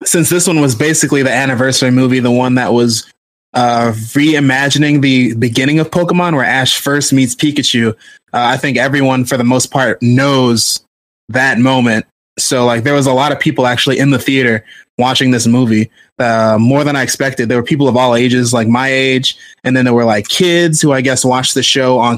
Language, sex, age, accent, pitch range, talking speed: English, male, 20-39, American, 120-145 Hz, 205 wpm